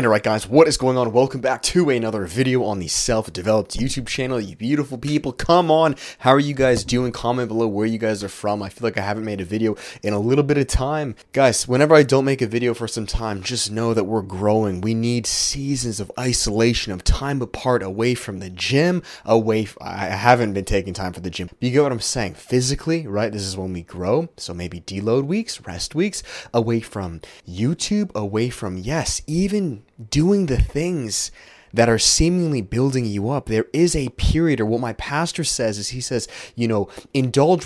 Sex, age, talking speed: male, 20-39, 210 wpm